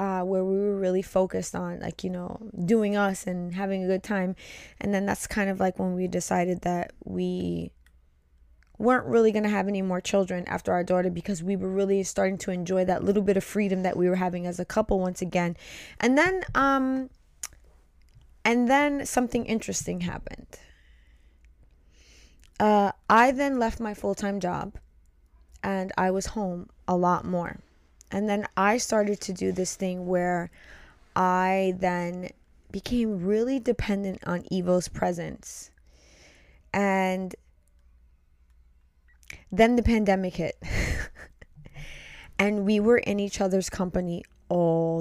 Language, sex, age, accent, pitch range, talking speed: English, female, 20-39, American, 170-205 Hz, 150 wpm